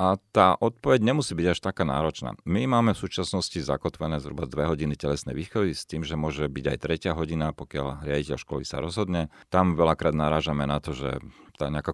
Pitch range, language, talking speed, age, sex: 70-85 Hz, Slovak, 195 wpm, 40-59, male